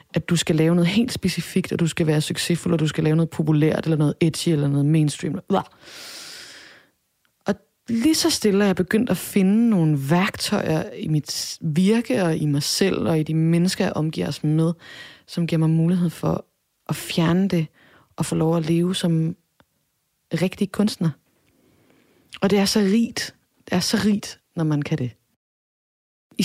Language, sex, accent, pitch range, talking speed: Danish, female, native, 160-195 Hz, 180 wpm